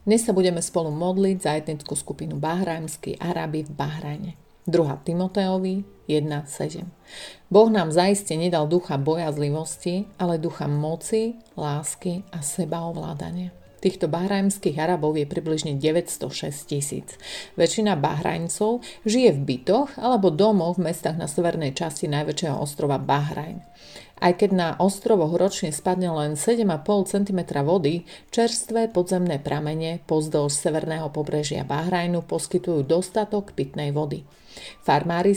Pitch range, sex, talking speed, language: 155-185 Hz, female, 120 wpm, Slovak